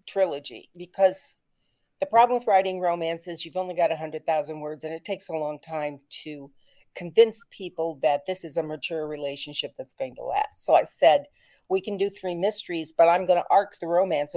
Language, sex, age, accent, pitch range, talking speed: English, female, 50-69, American, 160-205 Hz, 205 wpm